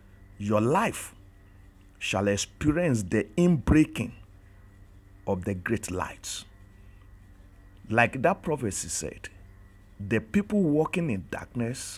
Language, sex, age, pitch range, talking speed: English, male, 50-69, 95-115 Hz, 95 wpm